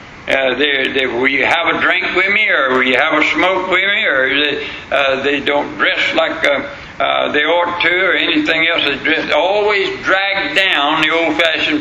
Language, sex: English, male